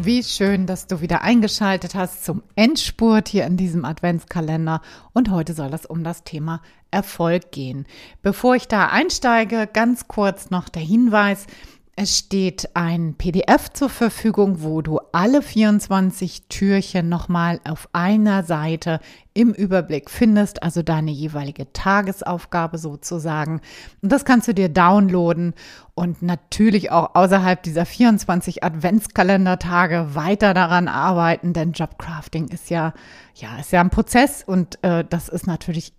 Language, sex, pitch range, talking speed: German, female, 165-205 Hz, 140 wpm